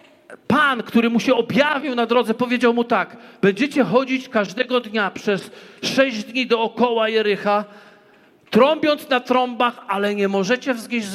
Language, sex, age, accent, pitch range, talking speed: Polish, male, 40-59, native, 215-265 Hz, 140 wpm